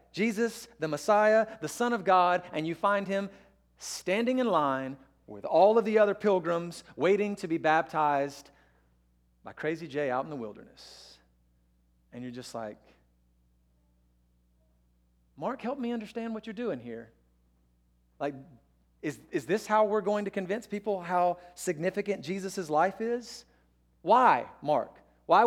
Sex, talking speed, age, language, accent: male, 145 wpm, 40-59, English, American